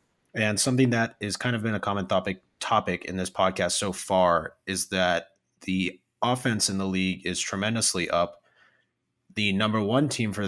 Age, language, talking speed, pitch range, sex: 30-49, English, 180 wpm, 95-115 Hz, male